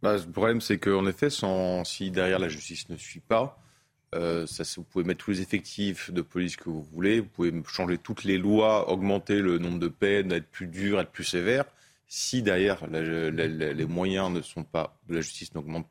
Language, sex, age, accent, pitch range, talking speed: French, male, 30-49, French, 85-100 Hz, 220 wpm